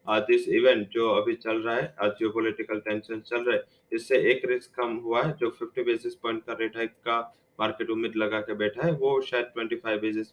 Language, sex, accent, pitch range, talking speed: English, male, Indian, 110-165 Hz, 215 wpm